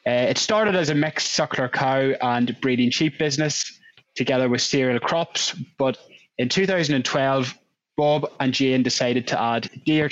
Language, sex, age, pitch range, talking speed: English, male, 20-39, 130-160 Hz, 155 wpm